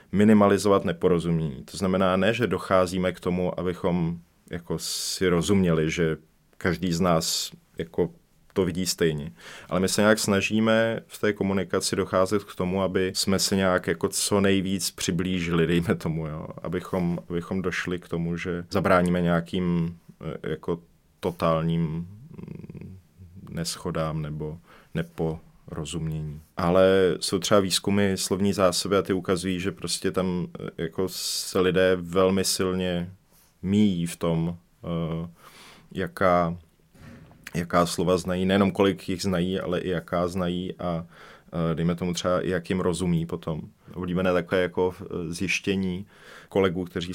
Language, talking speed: Czech, 135 wpm